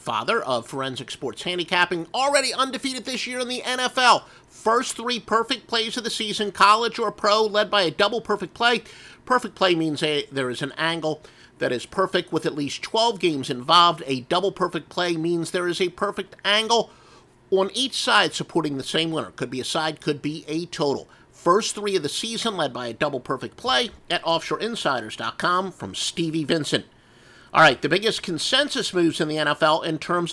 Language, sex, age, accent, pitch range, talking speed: English, male, 50-69, American, 150-205 Hz, 190 wpm